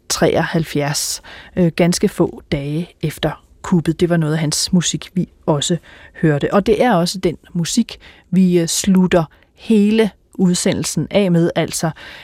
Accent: native